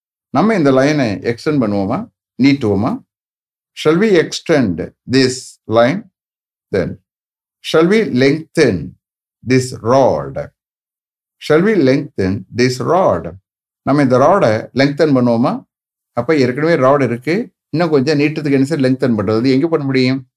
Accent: Indian